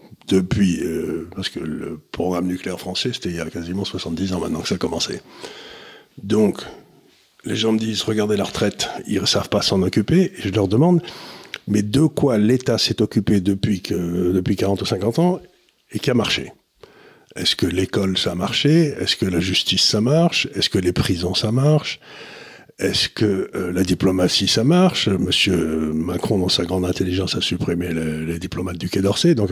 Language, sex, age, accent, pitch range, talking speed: French, male, 60-79, French, 90-115 Hz, 190 wpm